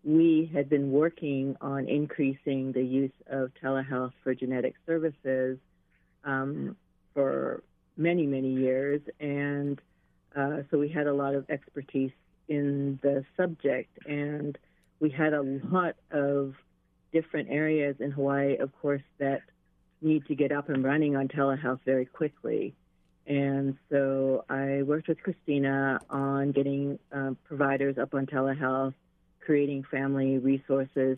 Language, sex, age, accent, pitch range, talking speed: English, female, 40-59, American, 135-150 Hz, 135 wpm